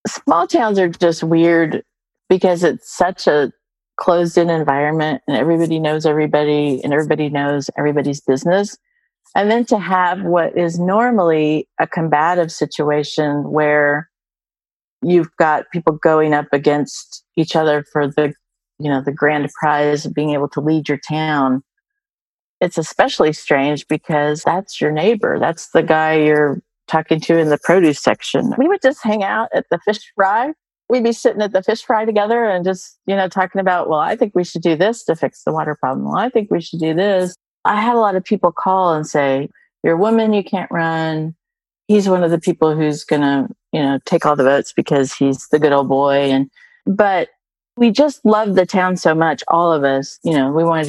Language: English